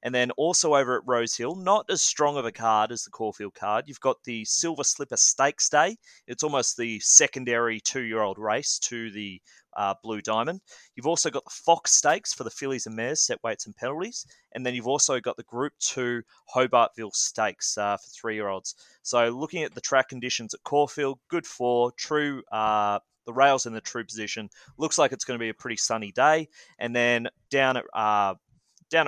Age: 30-49